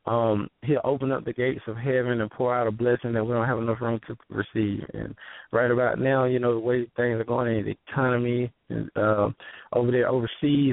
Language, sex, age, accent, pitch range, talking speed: English, male, 20-39, American, 115-135 Hz, 225 wpm